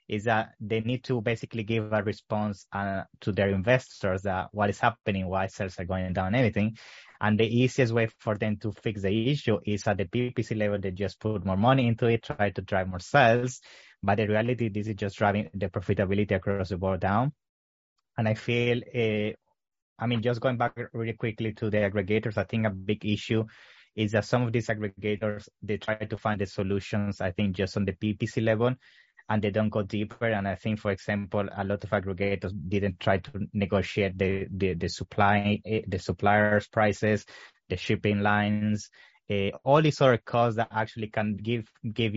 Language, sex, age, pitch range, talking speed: English, male, 20-39, 100-115 Hz, 200 wpm